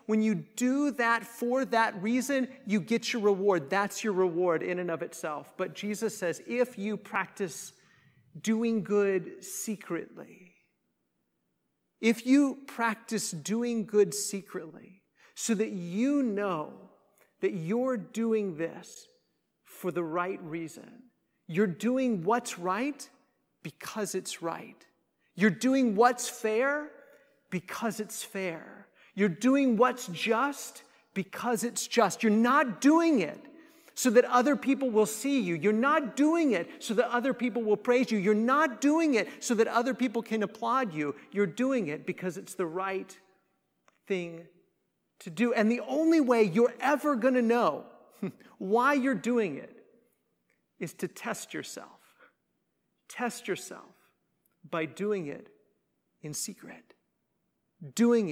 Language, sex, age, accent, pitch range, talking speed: English, male, 40-59, American, 195-250 Hz, 140 wpm